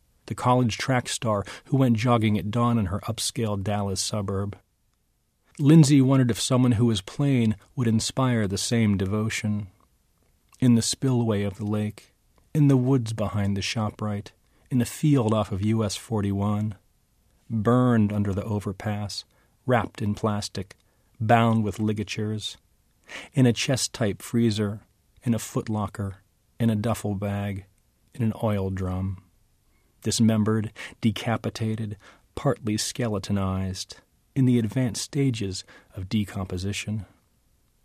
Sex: male